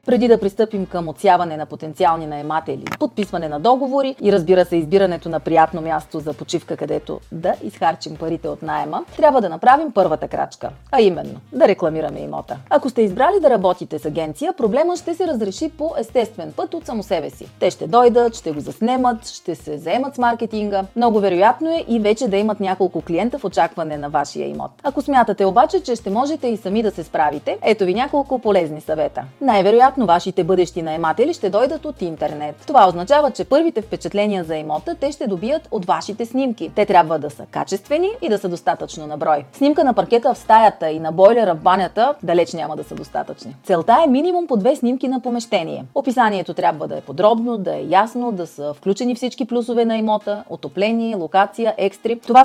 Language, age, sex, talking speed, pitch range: Bulgarian, 30-49, female, 195 wpm, 170-245 Hz